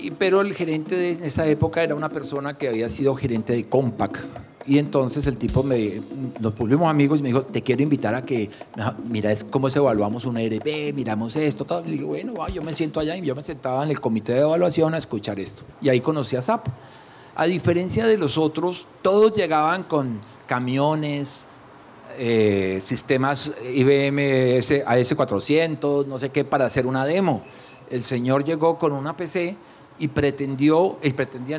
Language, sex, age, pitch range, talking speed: Spanish, male, 40-59, 130-170 Hz, 175 wpm